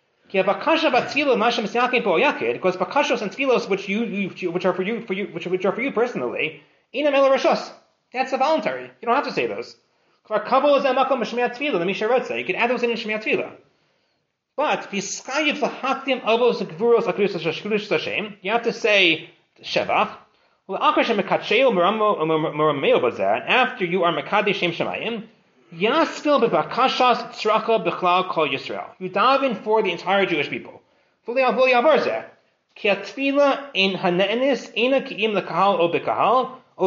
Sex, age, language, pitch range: male, 30-49, English, 180-255 Hz